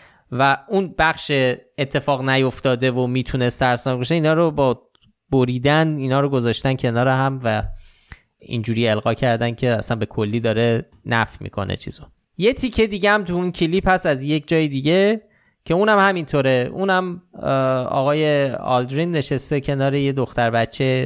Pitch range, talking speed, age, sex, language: 120-155 Hz, 150 wpm, 20-39, male, Persian